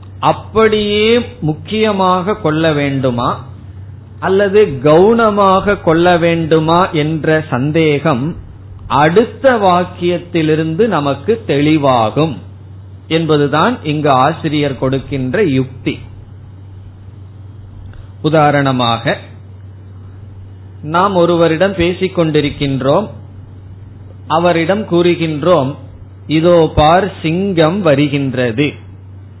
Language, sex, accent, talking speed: Tamil, male, native, 60 wpm